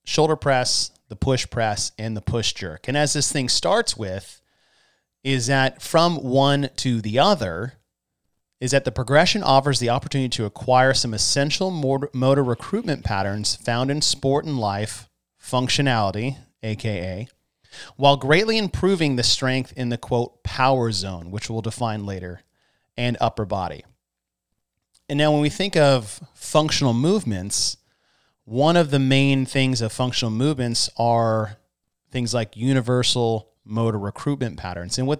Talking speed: 145 wpm